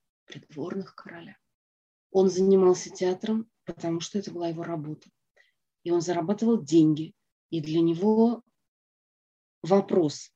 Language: Russian